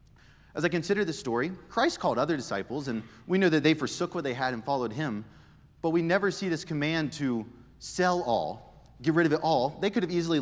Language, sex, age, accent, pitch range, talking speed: English, male, 30-49, American, 130-180 Hz, 225 wpm